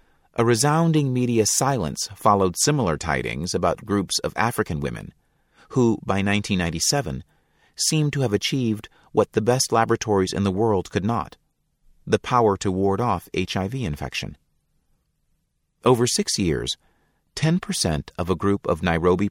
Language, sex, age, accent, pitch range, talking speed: English, male, 30-49, American, 85-120 Hz, 135 wpm